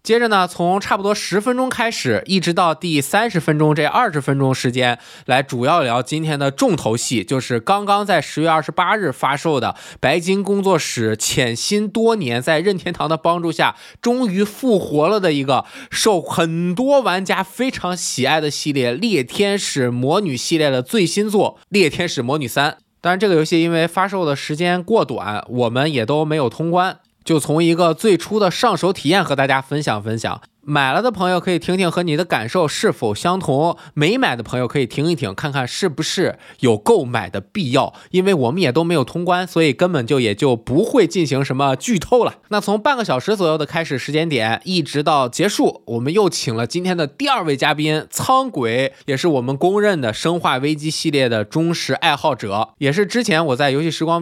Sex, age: male, 20-39